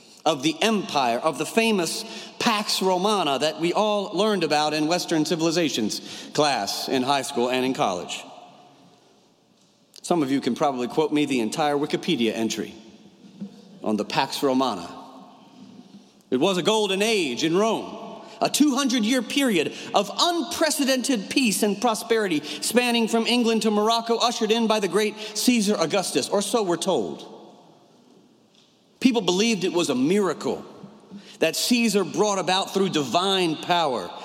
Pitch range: 160-215 Hz